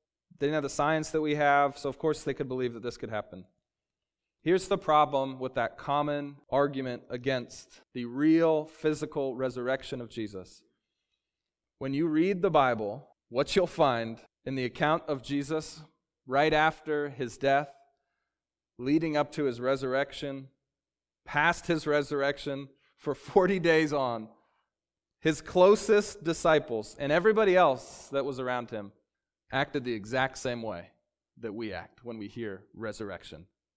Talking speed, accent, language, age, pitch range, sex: 145 wpm, American, English, 30-49, 125-155 Hz, male